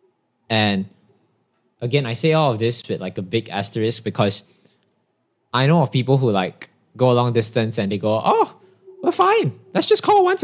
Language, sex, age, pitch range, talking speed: English, male, 20-39, 105-160 Hz, 190 wpm